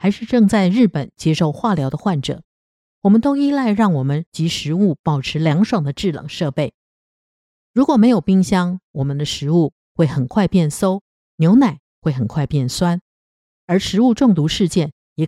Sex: female